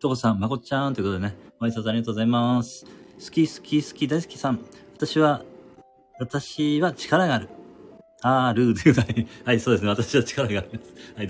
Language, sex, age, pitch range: Japanese, male, 40-59, 120-150 Hz